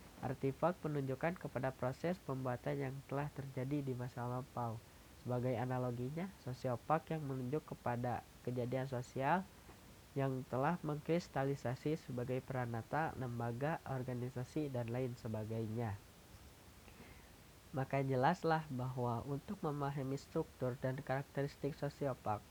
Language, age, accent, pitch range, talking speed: Indonesian, 20-39, native, 125-145 Hz, 100 wpm